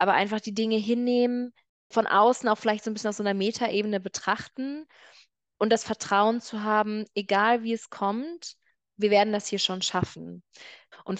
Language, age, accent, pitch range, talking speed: German, 20-39, German, 180-205 Hz, 175 wpm